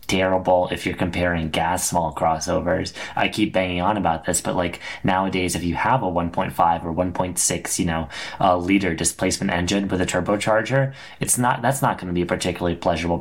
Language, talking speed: English, 190 wpm